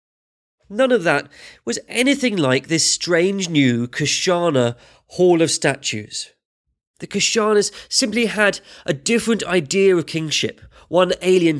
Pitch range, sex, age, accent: 130-195 Hz, male, 30-49, British